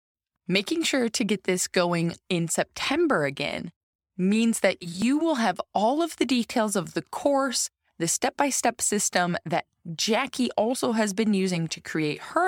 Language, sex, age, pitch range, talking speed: English, female, 20-39, 155-220 Hz, 160 wpm